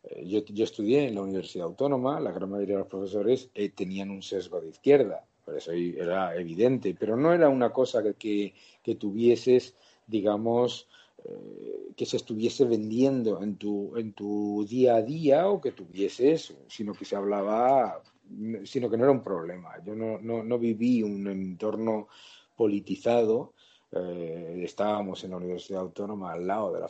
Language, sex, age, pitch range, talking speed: Spanish, male, 50-69, 100-140 Hz, 170 wpm